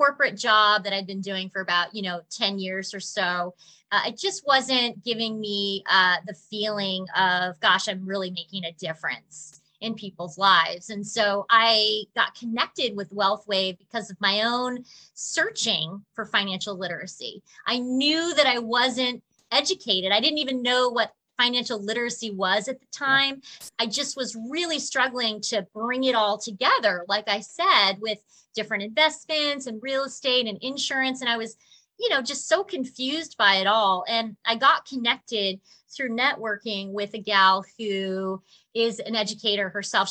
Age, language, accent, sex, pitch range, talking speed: 30-49, English, American, female, 195-245 Hz, 165 wpm